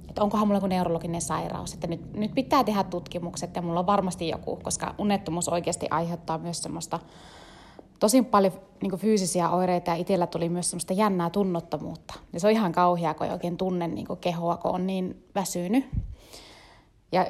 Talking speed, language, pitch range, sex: 175 wpm, Finnish, 170-200 Hz, female